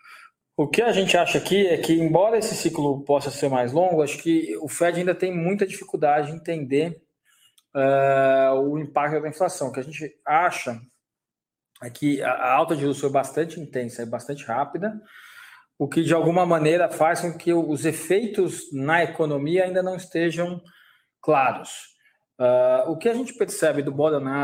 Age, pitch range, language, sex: 20-39, 135-170 Hz, Portuguese, male